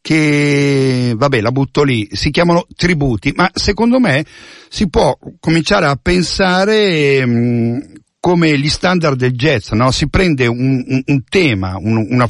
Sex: male